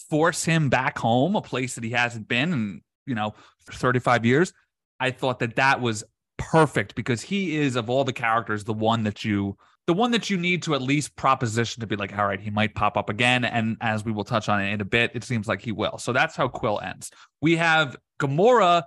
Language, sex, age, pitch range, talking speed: English, male, 30-49, 110-145 Hz, 235 wpm